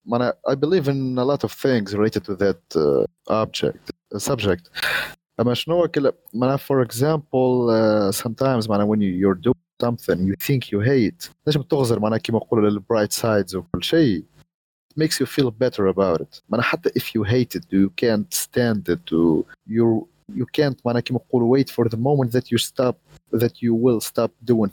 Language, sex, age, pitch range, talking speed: Arabic, male, 30-49, 105-140 Hz, 135 wpm